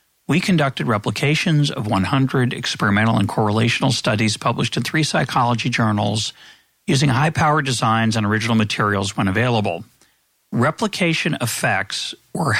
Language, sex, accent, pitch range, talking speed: English, male, American, 115-155 Hz, 125 wpm